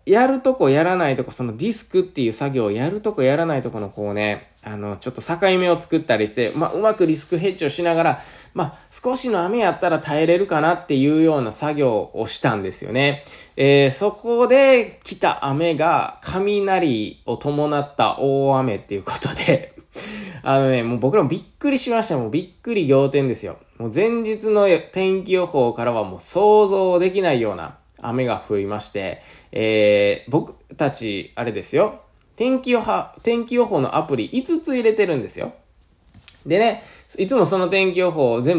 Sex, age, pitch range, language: male, 20-39, 120-195 Hz, Japanese